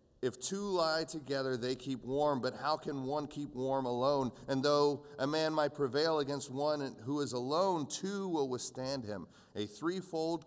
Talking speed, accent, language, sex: 180 wpm, American, English, male